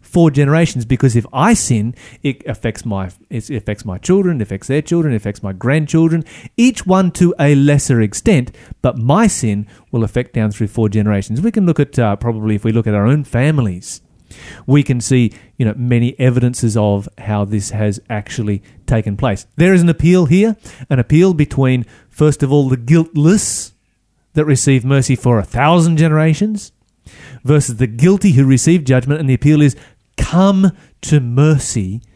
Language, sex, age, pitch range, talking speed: English, male, 30-49, 110-150 Hz, 180 wpm